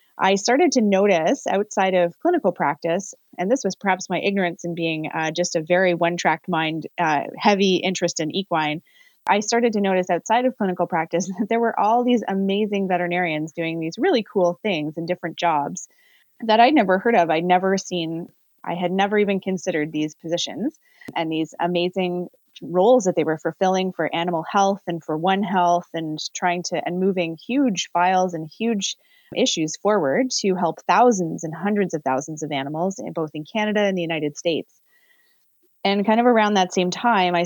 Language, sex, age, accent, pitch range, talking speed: English, female, 20-39, American, 170-210 Hz, 185 wpm